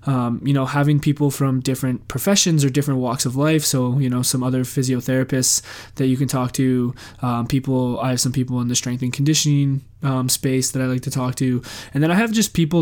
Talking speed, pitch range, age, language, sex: 230 wpm, 125-140 Hz, 20-39, English, male